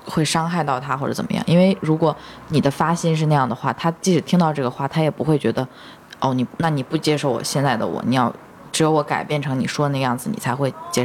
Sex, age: female, 20-39